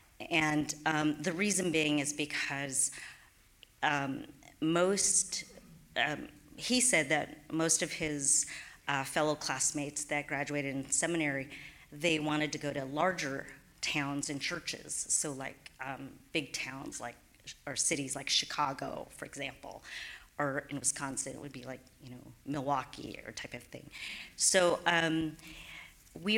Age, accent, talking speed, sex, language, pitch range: 40-59, American, 135 wpm, female, English, 140-165 Hz